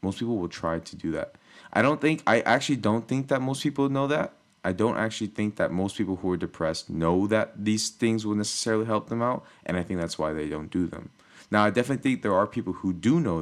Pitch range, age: 95-135 Hz, 20-39